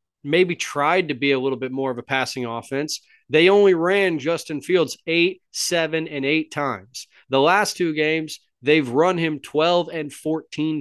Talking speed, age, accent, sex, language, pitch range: 180 wpm, 30-49, American, male, English, 135-175 Hz